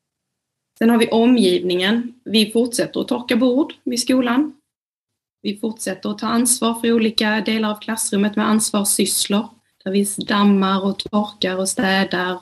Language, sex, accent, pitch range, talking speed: Swedish, female, native, 190-225 Hz, 145 wpm